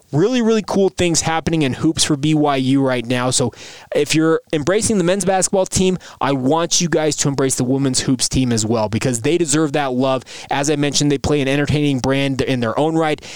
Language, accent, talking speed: English, American, 215 wpm